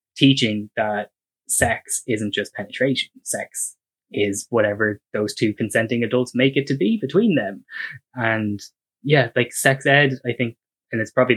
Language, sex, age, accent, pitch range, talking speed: English, male, 10-29, Irish, 110-125 Hz, 155 wpm